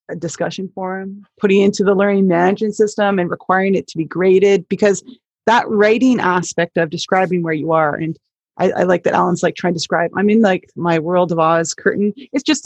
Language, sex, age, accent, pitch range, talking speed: English, female, 30-49, American, 175-215 Hz, 205 wpm